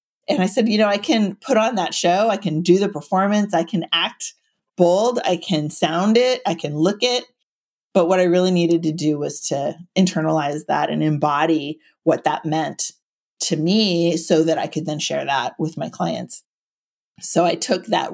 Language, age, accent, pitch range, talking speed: English, 30-49, American, 165-195 Hz, 200 wpm